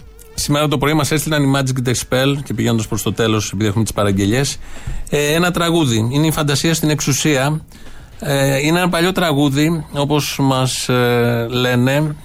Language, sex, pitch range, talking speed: Greek, male, 120-150 Hz, 165 wpm